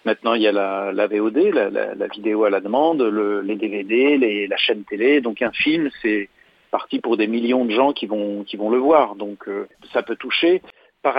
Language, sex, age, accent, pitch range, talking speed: French, male, 50-69, French, 110-135 Hz, 215 wpm